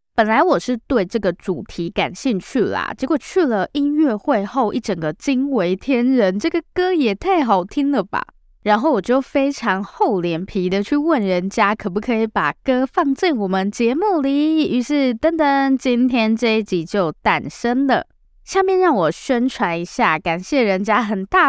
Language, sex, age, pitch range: Chinese, female, 20-39, 185-270 Hz